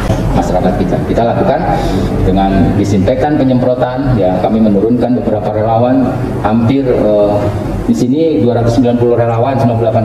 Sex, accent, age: male, native, 30-49